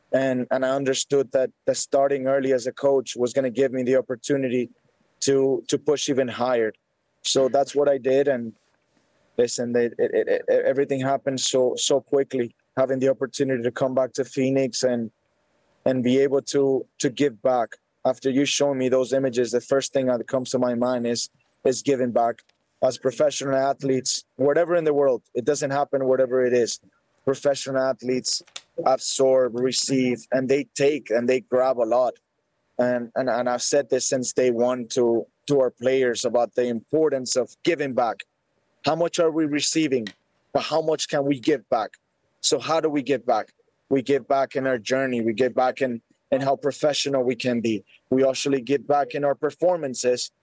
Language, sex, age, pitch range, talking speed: English, male, 20-39, 125-140 Hz, 190 wpm